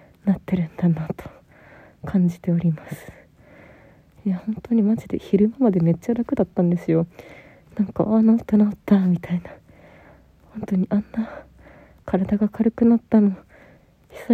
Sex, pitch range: female, 185-215 Hz